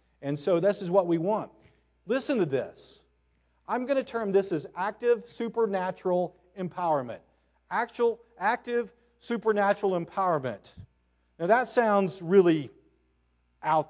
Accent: American